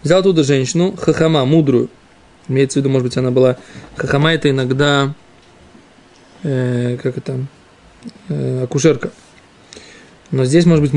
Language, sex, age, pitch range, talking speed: Russian, male, 20-39, 135-175 Hz, 130 wpm